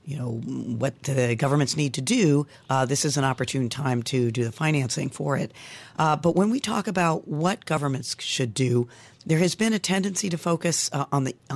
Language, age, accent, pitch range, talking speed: English, 50-69, American, 135-175 Hz, 210 wpm